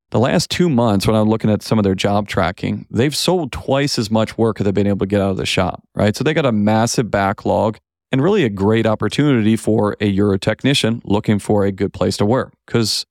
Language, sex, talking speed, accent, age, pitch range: English, male, 240 wpm, American, 40-59, 110-145 Hz